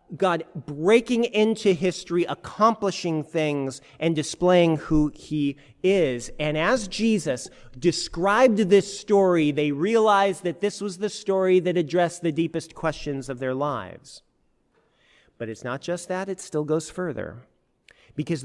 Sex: male